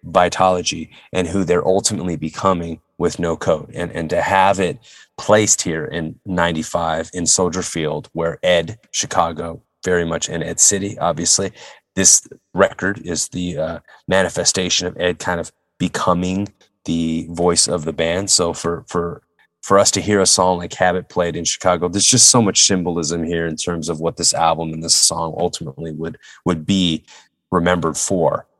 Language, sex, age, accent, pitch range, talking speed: English, male, 30-49, American, 80-95 Hz, 170 wpm